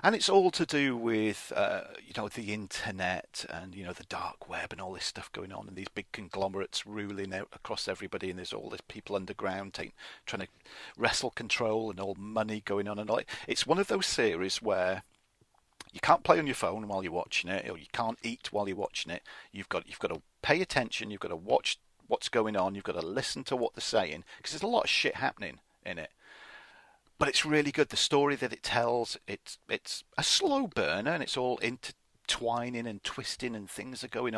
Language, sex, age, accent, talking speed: English, male, 40-59, British, 225 wpm